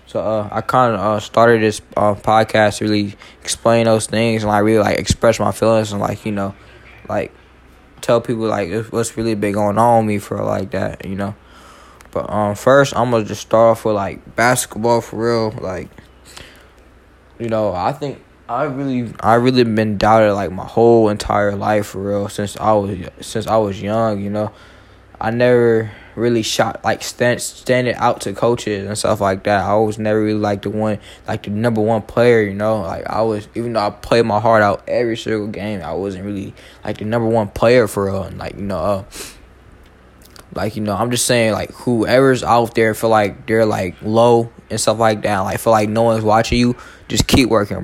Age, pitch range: 10-29, 100-115 Hz